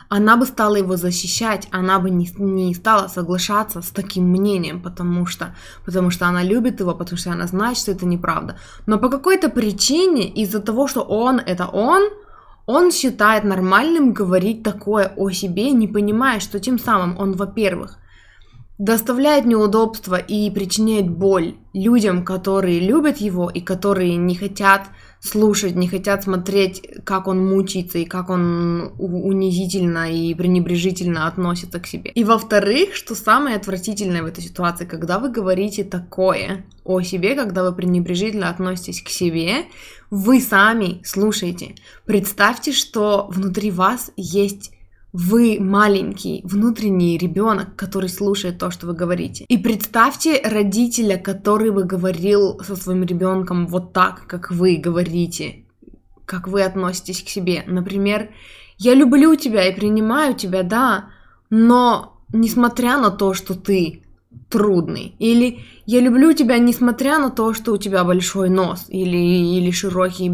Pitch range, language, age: 180-220 Hz, Russian, 20-39